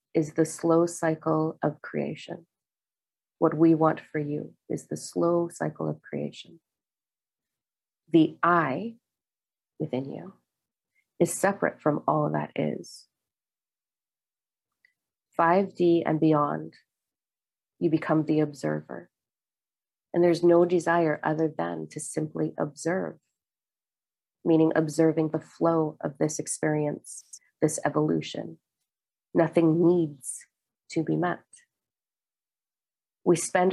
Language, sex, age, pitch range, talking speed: English, female, 40-59, 150-175 Hz, 105 wpm